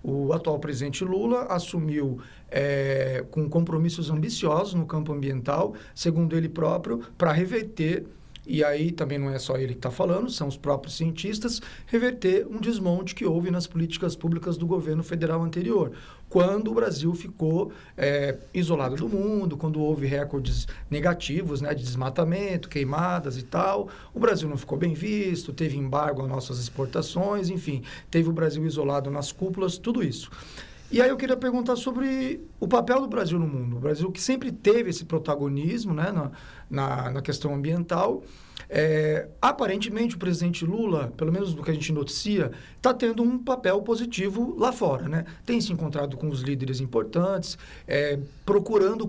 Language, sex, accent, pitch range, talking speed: English, male, Brazilian, 145-190 Hz, 165 wpm